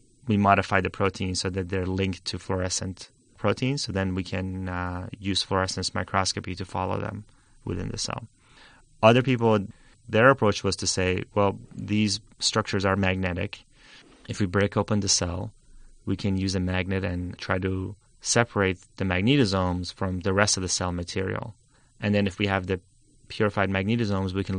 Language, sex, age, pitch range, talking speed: English, male, 30-49, 95-110 Hz, 175 wpm